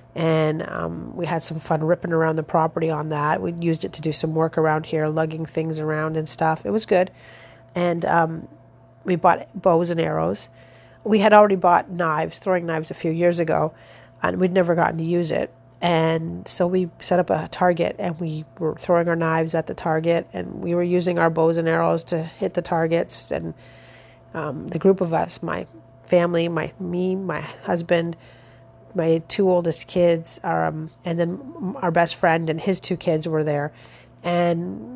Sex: female